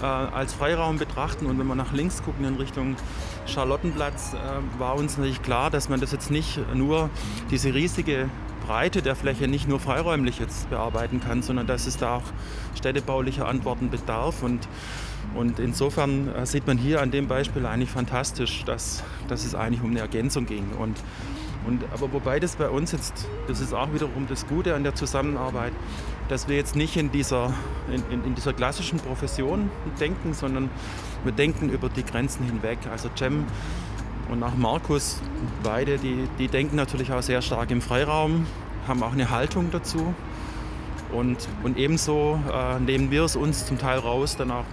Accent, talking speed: German, 170 wpm